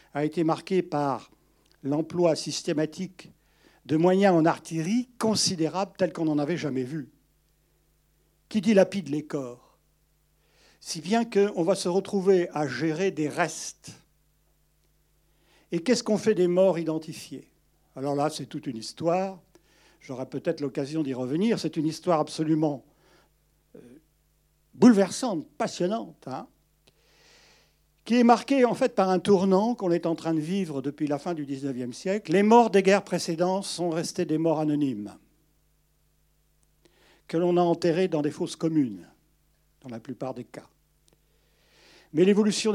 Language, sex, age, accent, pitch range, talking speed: French, male, 70-89, French, 150-195 Hz, 140 wpm